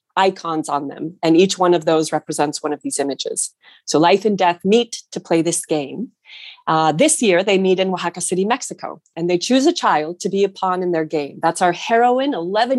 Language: English